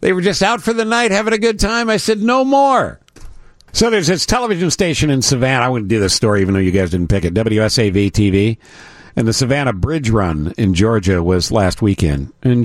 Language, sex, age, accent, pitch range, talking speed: English, male, 50-69, American, 95-135 Hz, 225 wpm